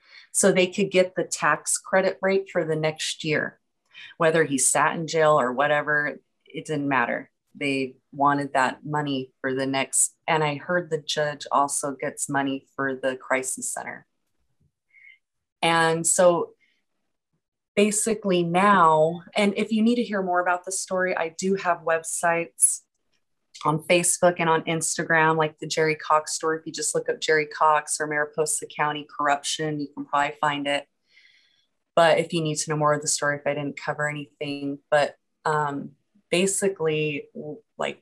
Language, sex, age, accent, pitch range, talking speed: English, female, 30-49, American, 150-175 Hz, 165 wpm